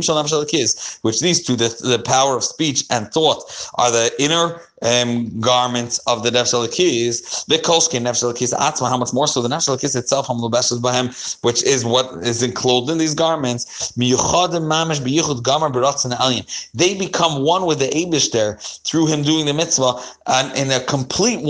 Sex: male